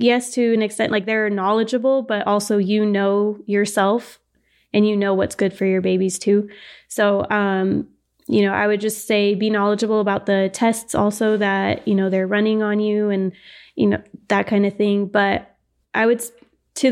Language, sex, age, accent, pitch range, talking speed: English, female, 20-39, American, 200-220 Hz, 190 wpm